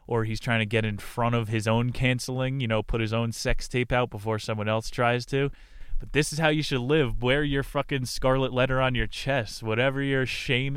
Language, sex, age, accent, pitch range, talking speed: English, male, 20-39, American, 110-130 Hz, 235 wpm